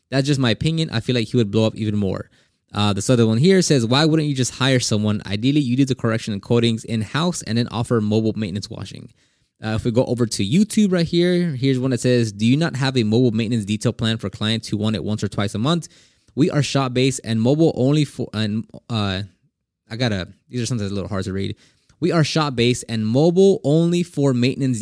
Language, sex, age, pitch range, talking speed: English, male, 20-39, 105-140 Hz, 235 wpm